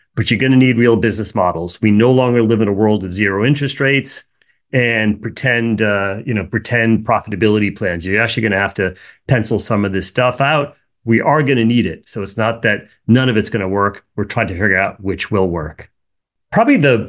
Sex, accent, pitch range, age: male, American, 110-135 Hz, 30-49